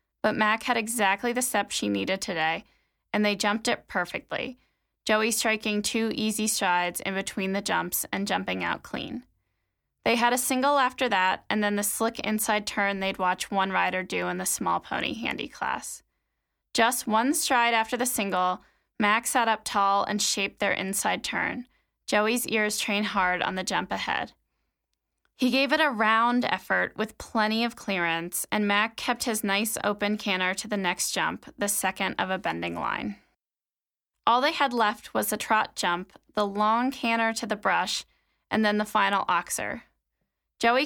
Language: English